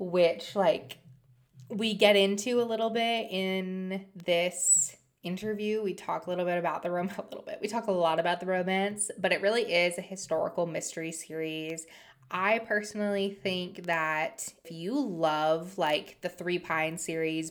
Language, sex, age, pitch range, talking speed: English, female, 20-39, 160-205 Hz, 170 wpm